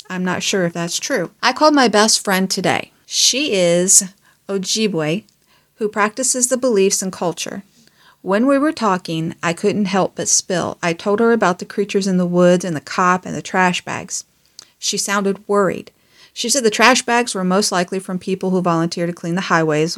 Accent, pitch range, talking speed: American, 175-210 Hz, 195 wpm